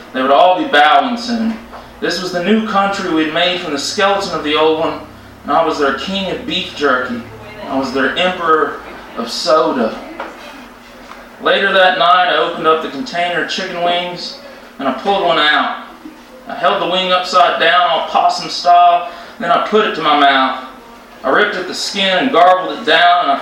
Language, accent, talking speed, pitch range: English, American, 200 wpm, 160-230 Hz